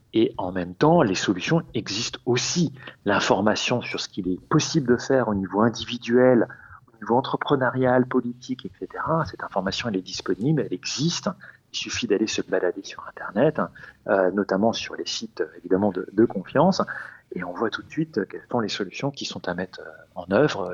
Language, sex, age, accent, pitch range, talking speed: French, male, 40-59, French, 110-150 Hz, 180 wpm